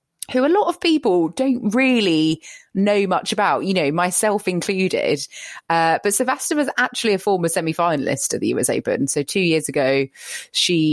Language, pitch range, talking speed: English, 165-225 Hz, 170 wpm